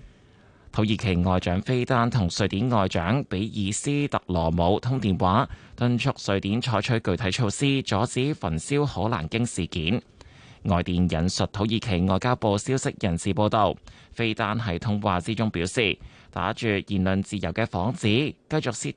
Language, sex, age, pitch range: Chinese, male, 20-39, 95-125 Hz